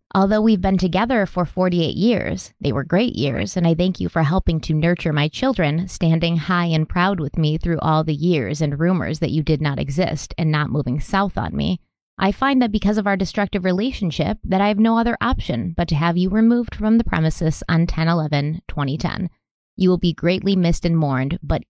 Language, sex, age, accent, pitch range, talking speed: English, female, 20-39, American, 165-200 Hz, 210 wpm